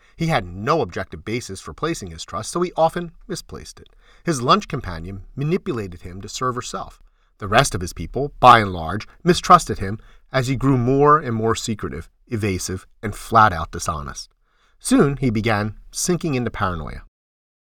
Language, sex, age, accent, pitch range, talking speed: English, male, 40-59, American, 95-135 Hz, 165 wpm